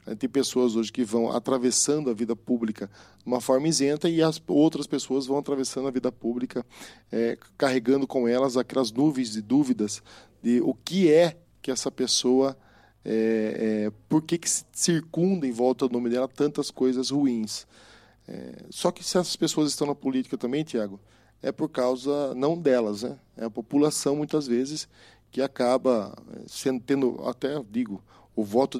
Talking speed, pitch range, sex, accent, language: 155 wpm, 115-140 Hz, male, Brazilian, Portuguese